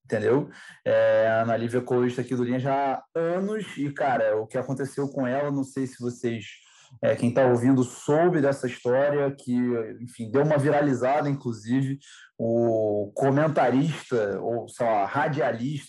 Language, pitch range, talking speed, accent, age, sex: Portuguese, 125-145 Hz, 160 wpm, Brazilian, 20-39, male